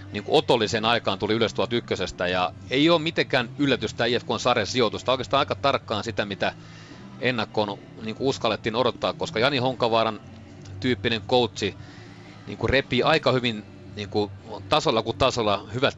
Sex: male